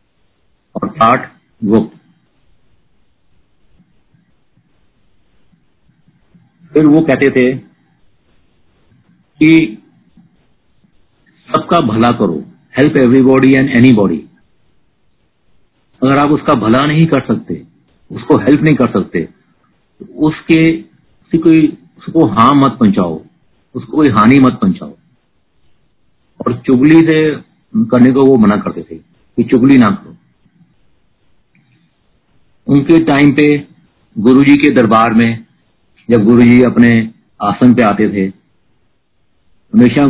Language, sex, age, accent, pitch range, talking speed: Hindi, male, 50-69, native, 115-145 Hz, 95 wpm